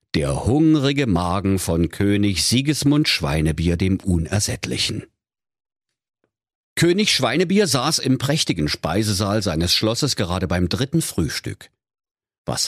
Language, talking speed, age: German, 105 wpm, 50-69